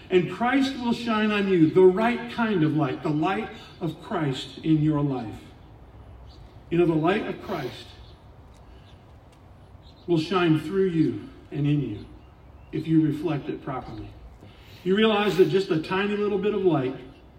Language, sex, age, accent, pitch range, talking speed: English, male, 50-69, American, 145-205 Hz, 160 wpm